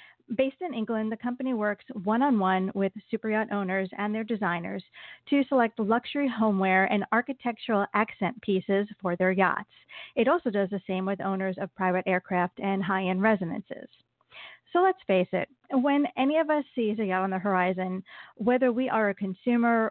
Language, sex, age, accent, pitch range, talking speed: English, female, 40-59, American, 190-235 Hz, 170 wpm